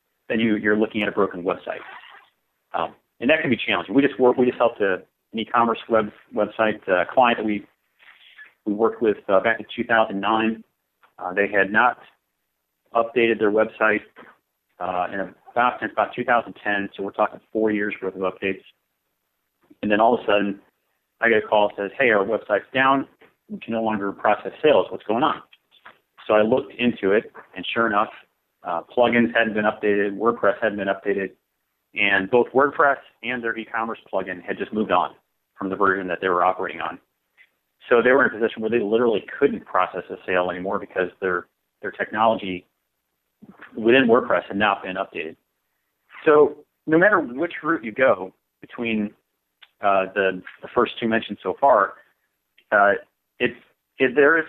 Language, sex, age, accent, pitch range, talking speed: English, male, 40-59, American, 100-120 Hz, 180 wpm